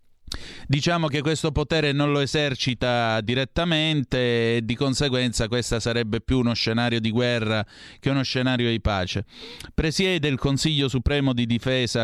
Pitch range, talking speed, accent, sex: 110-145 Hz, 145 wpm, native, male